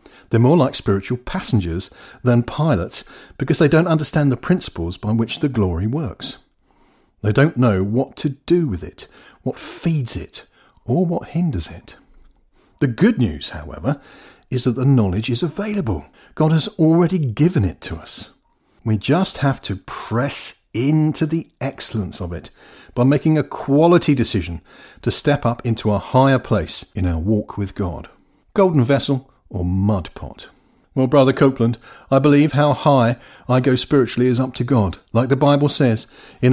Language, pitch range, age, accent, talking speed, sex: English, 105-140 Hz, 50-69, British, 165 wpm, male